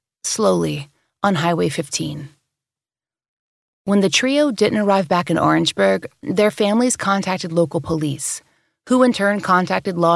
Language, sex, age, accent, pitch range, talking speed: English, female, 30-49, American, 160-200 Hz, 130 wpm